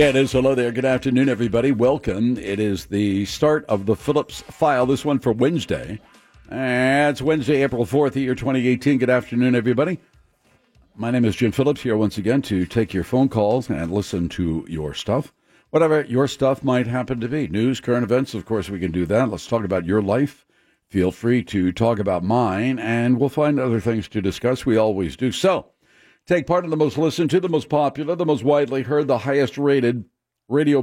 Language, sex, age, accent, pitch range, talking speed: English, male, 60-79, American, 115-135 Hz, 200 wpm